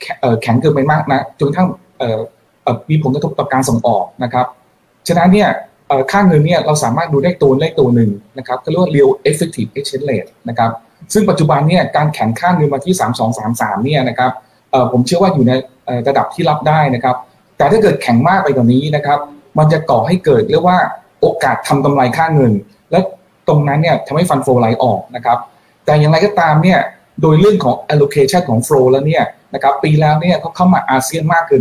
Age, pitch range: 20-39, 125-165 Hz